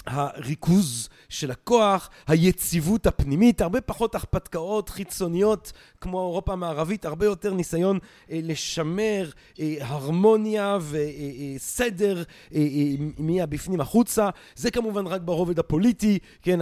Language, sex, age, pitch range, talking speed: Hebrew, male, 30-49, 165-210 Hz, 120 wpm